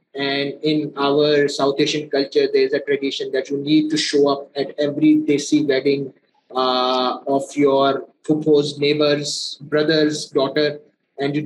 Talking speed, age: 150 wpm, 20-39